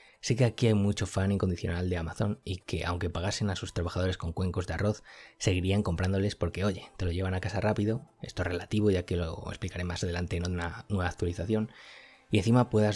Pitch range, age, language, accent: 90-105 Hz, 20-39, Spanish, Spanish